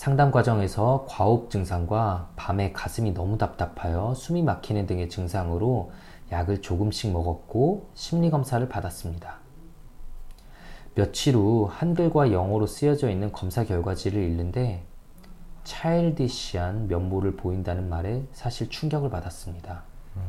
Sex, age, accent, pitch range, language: male, 20-39, native, 90-125 Hz, Korean